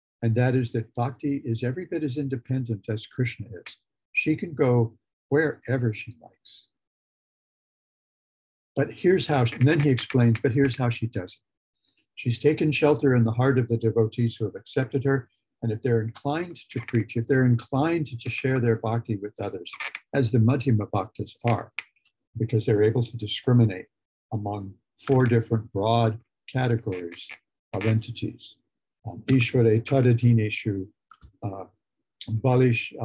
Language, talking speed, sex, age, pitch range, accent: English, 145 wpm, male, 60-79, 110-130 Hz, American